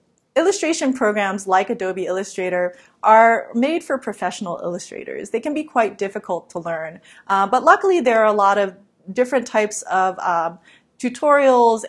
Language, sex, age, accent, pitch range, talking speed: English, female, 30-49, American, 185-225 Hz, 150 wpm